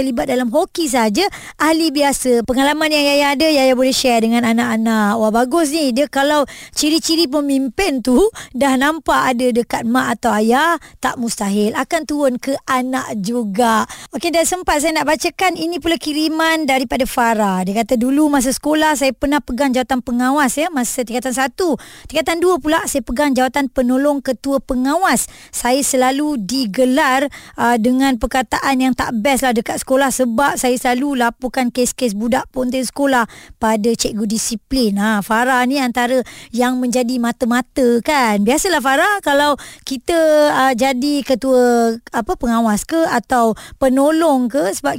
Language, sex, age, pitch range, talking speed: Malay, male, 20-39, 245-300 Hz, 155 wpm